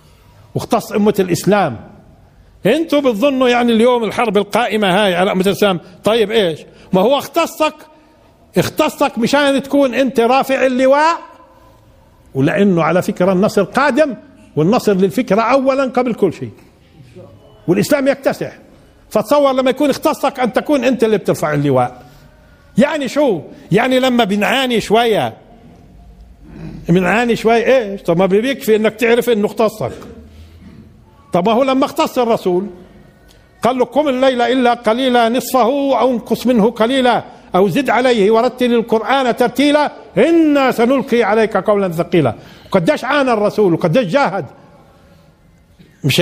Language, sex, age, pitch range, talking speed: Arabic, male, 50-69, 195-265 Hz, 125 wpm